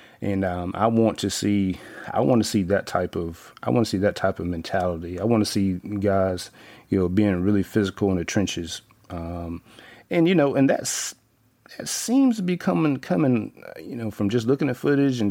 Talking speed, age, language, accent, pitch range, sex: 210 wpm, 30-49, English, American, 95-110 Hz, male